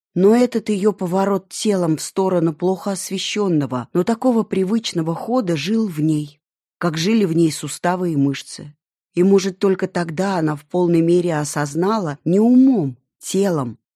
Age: 20-39